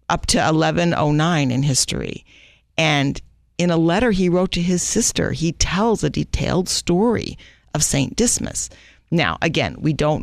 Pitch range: 135-175 Hz